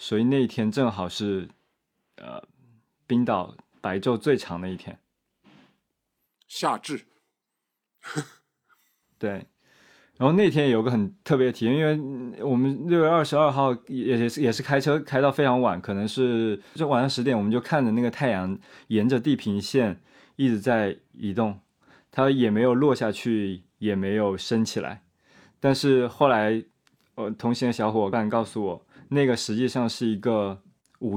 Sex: male